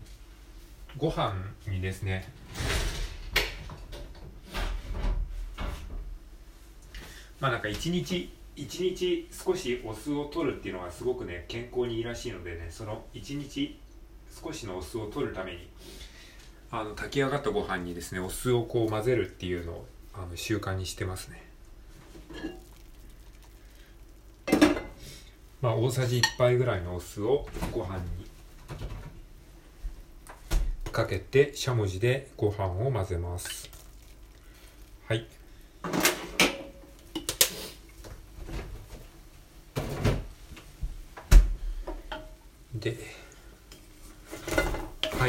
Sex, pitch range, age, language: male, 90-120 Hz, 40-59, Japanese